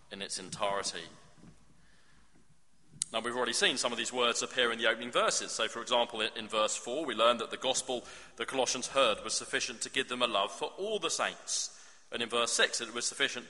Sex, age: male, 40-59